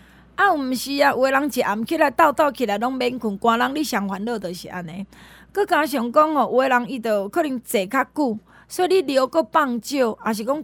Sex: female